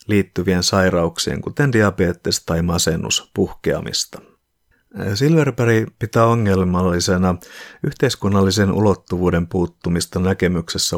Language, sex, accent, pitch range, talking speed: Finnish, male, native, 85-105 Hz, 75 wpm